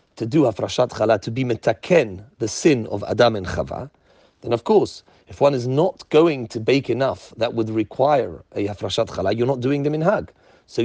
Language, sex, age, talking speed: English, male, 40-59, 205 wpm